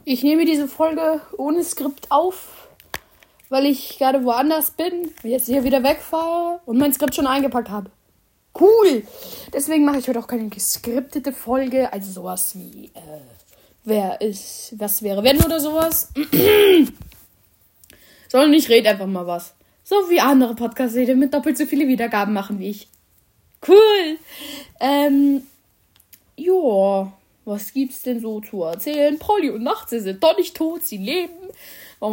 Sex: female